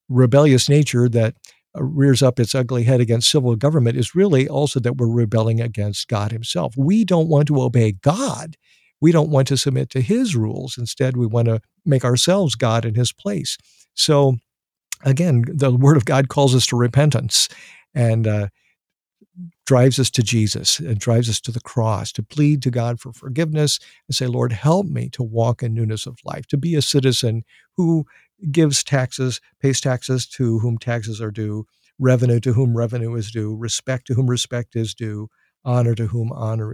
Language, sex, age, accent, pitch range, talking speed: English, male, 50-69, American, 115-145 Hz, 185 wpm